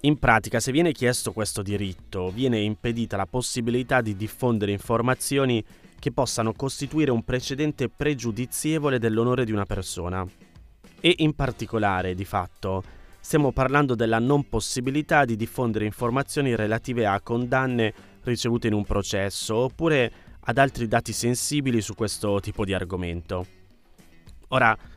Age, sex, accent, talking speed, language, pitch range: 20-39, male, native, 130 wpm, Italian, 100-130 Hz